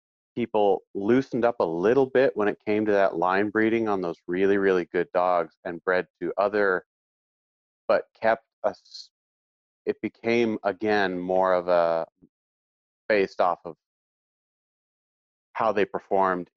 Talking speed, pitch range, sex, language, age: 140 wpm, 80-100 Hz, male, English, 30-49